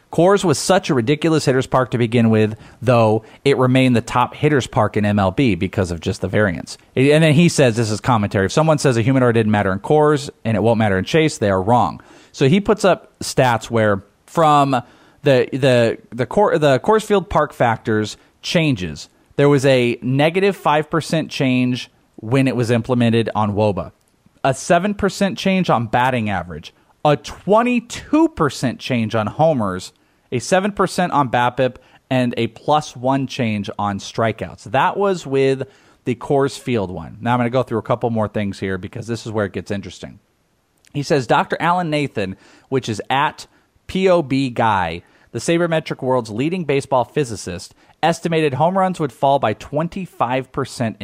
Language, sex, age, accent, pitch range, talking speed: English, male, 30-49, American, 110-150 Hz, 170 wpm